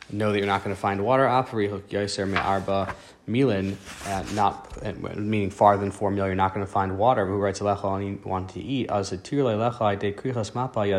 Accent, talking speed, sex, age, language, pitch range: American, 115 wpm, male, 20-39, English, 95-110 Hz